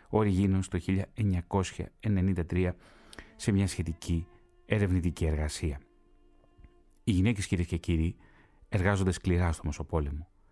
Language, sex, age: Greek, male, 30-49